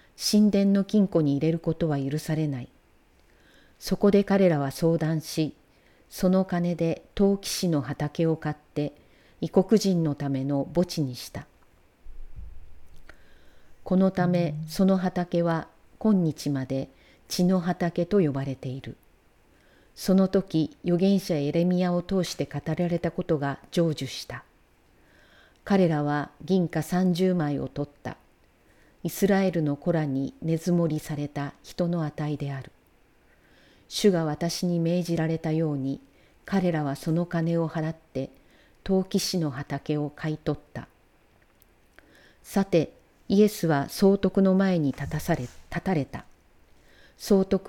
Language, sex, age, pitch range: Japanese, female, 40-59, 140-180 Hz